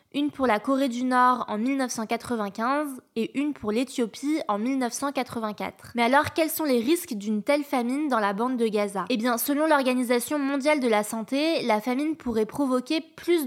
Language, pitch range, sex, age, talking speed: French, 225-275 Hz, female, 20-39, 185 wpm